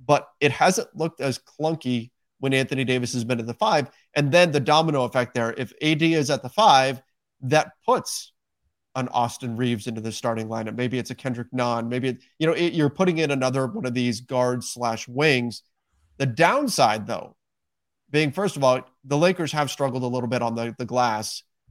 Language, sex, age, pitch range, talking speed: English, male, 30-49, 120-145 Hz, 200 wpm